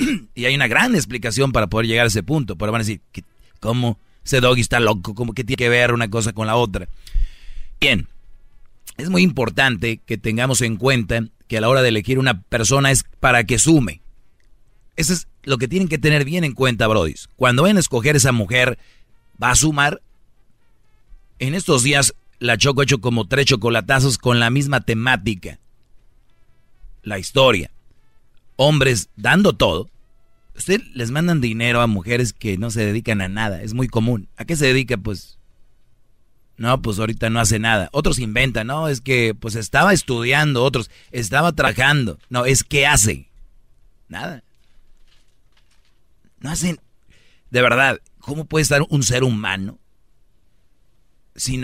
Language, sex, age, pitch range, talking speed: English, male, 40-59, 110-135 Hz, 165 wpm